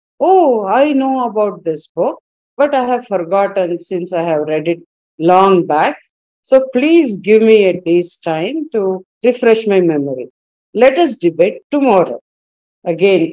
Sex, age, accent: female, 50-69, Indian